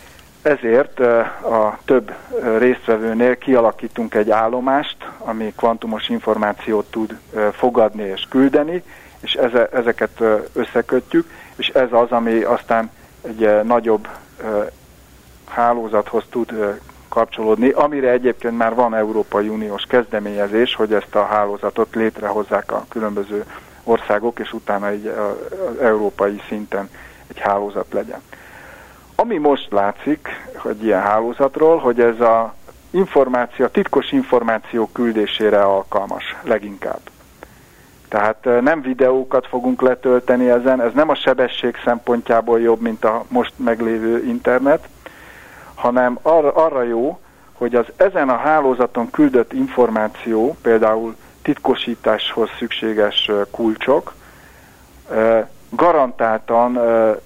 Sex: male